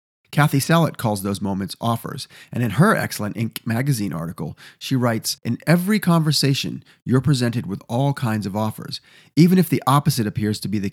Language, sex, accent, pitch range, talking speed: English, male, American, 115-155 Hz, 180 wpm